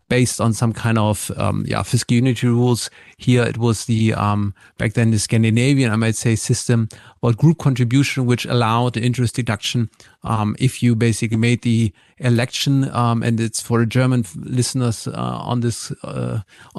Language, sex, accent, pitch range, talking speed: German, male, German, 115-135 Hz, 175 wpm